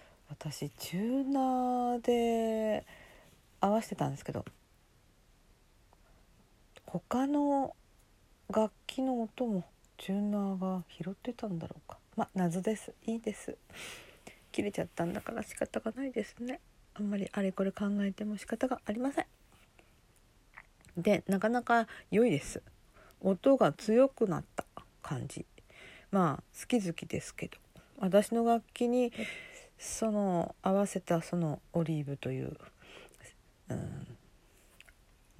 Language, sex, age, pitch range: Japanese, female, 40-59, 165-230 Hz